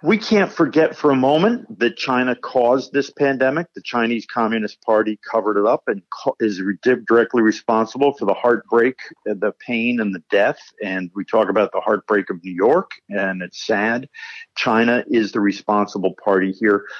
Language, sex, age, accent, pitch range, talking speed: English, male, 50-69, American, 110-145 Hz, 170 wpm